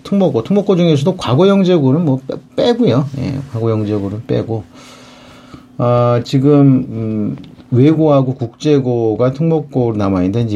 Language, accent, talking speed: English, Korean, 100 wpm